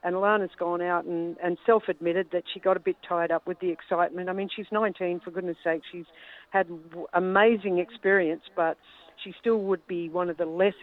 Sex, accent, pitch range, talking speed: female, Australian, 165-185 Hz, 205 wpm